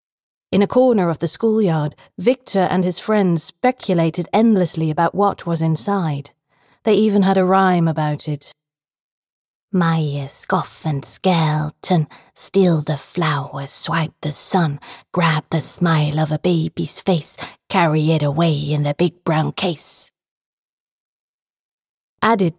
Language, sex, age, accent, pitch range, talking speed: English, female, 30-49, British, 155-190 Hz, 130 wpm